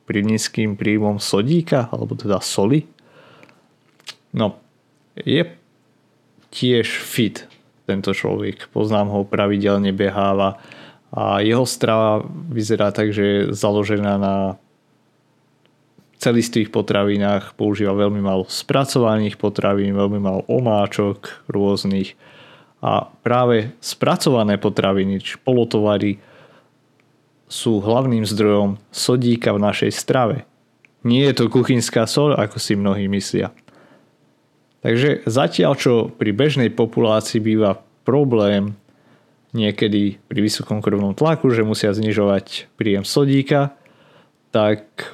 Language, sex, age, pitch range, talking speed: Slovak, male, 30-49, 100-120 Hz, 100 wpm